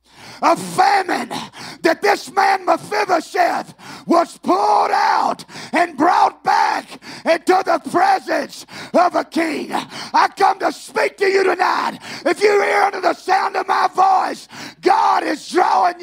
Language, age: English, 40-59